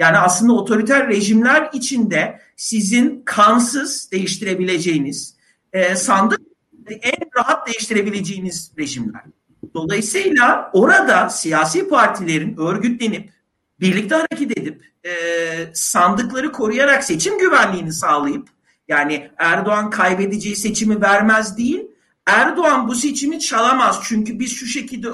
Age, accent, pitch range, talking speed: 50-69, native, 190-245 Hz, 95 wpm